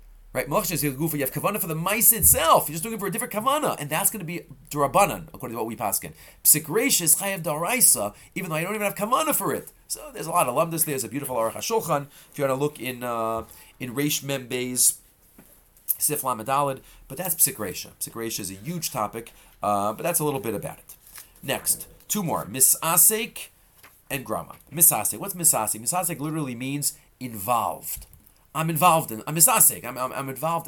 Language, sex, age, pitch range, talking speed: English, male, 30-49, 110-165 Hz, 200 wpm